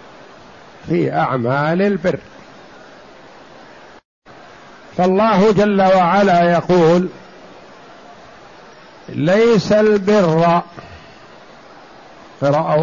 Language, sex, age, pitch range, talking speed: Arabic, male, 50-69, 170-205 Hz, 45 wpm